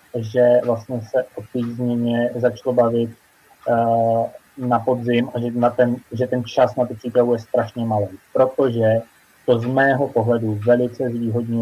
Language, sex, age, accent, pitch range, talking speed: Czech, male, 30-49, native, 115-125 Hz, 160 wpm